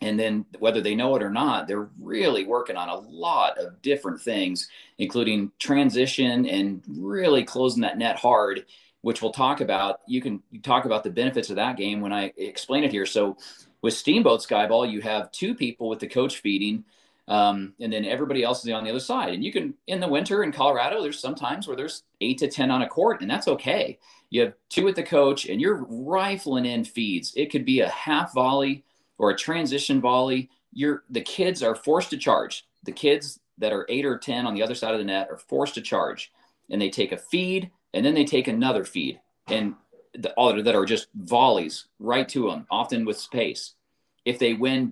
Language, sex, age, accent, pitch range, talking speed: English, male, 40-59, American, 110-150 Hz, 215 wpm